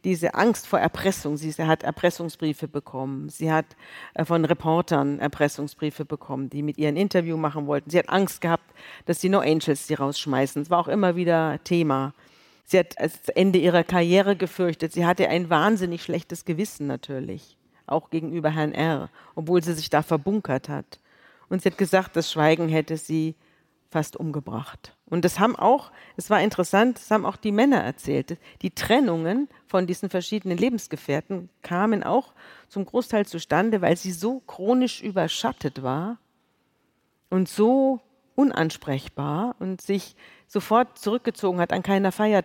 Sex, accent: female, German